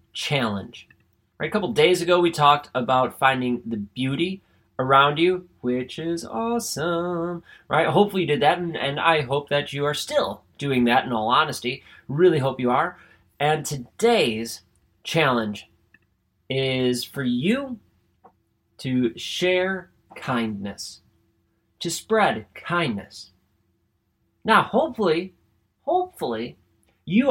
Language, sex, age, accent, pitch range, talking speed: English, male, 30-49, American, 115-180 Hz, 120 wpm